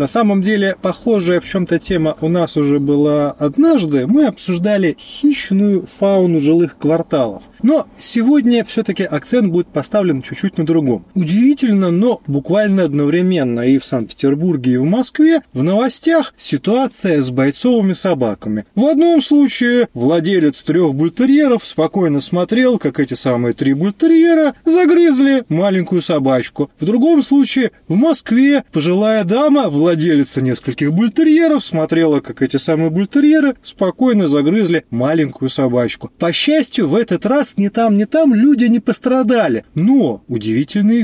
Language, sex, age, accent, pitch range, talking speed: Russian, male, 30-49, native, 155-255 Hz, 135 wpm